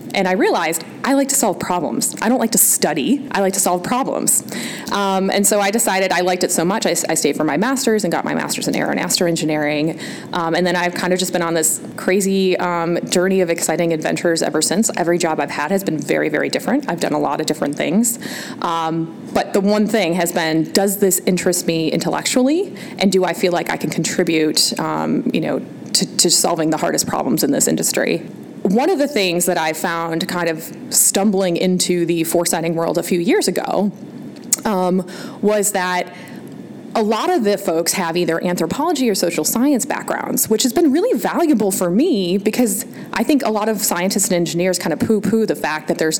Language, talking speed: English, 210 wpm